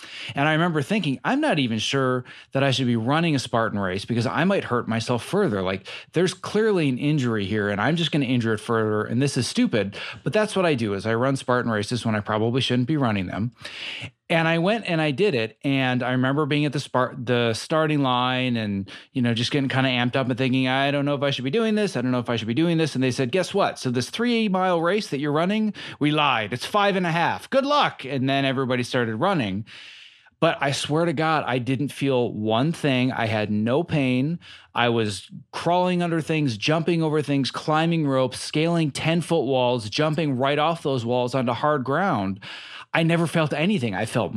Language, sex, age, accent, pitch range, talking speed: English, male, 30-49, American, 120-165 Hz, 230 wpm